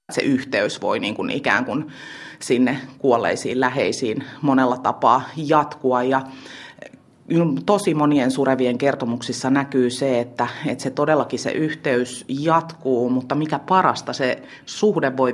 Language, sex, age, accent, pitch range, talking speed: Finnish, female, 30-49, native, 130-150 Hz, 130 wpm